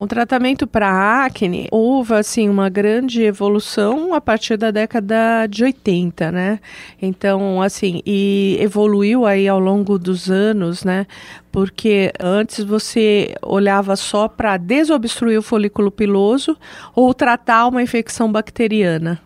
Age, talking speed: 40-59, 130 wpm